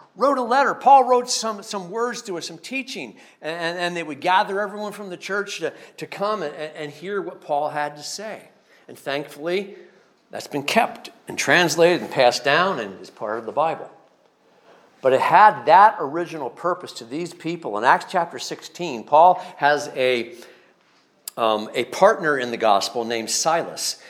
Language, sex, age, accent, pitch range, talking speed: English, male, 50-69, American, 145-195 Hz, 180 wpm